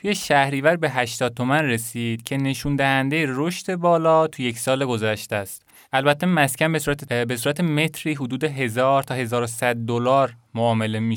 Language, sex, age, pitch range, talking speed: Persian, male, 20-39, 120-150 Hz, 160 wpm